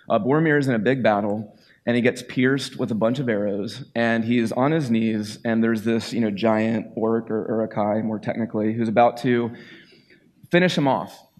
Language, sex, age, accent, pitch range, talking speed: English, male, 30-49, American, 110-135 Hz, 210 wpm